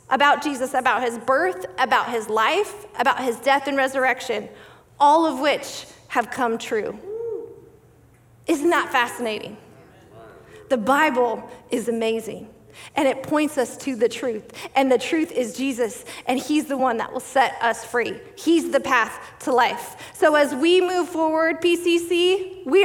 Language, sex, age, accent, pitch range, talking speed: English, female, 30-49, American, 255-325 Hz, 155 wpm